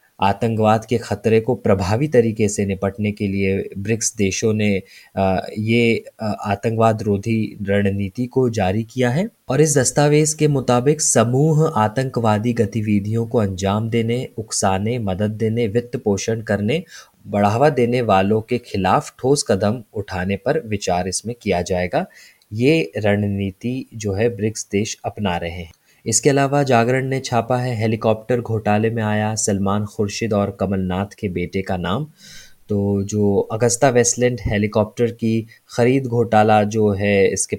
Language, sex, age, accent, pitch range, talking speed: Hindi, male, 20-39, native, 100-120 Hz, 140 wpm